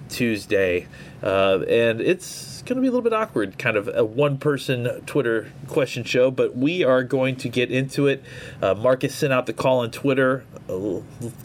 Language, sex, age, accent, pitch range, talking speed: English, male, 30-49, American, 125-155 Hz, 190 wpm